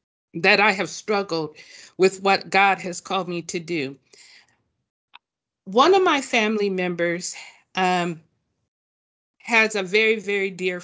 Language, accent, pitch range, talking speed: English, American, 175-215 Hz, 125 wpm